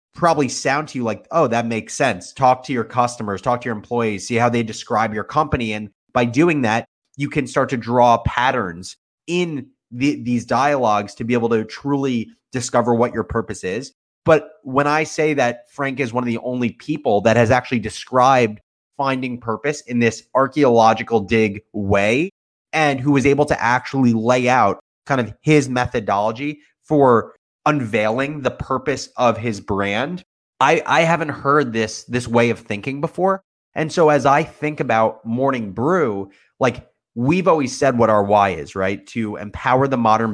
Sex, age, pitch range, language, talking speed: male, 30-49, 110-145 Hz, English, 180 wpm